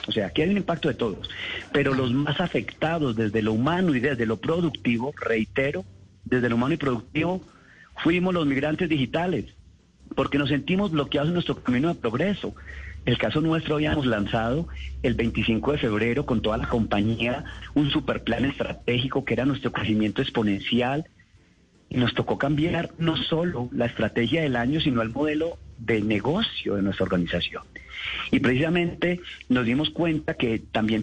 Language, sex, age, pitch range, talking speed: Spanish, male, 40-59, 110-150 Hz, 165 wpm